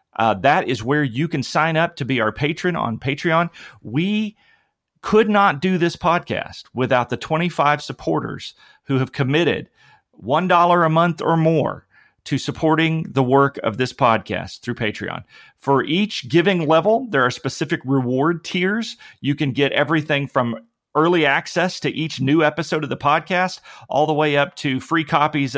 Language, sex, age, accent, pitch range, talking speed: English, male, 40-59, American, 130-165 Hz, 165 wpm